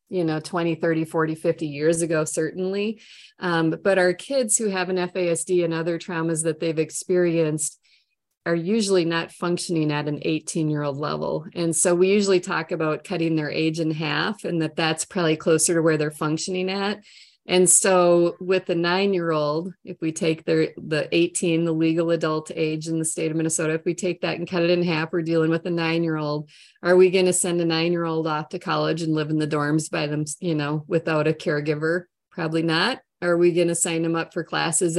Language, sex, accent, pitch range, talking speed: English, female, American, 160-180 Hz, 205 wpm